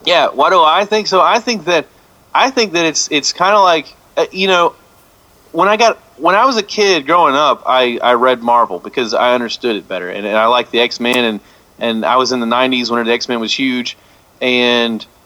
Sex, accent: male, American